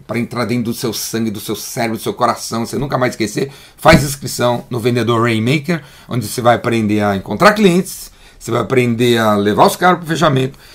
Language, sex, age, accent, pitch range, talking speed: Portuguese, male, 40-59, Brazilian, 115-145 Hz, 210 wpm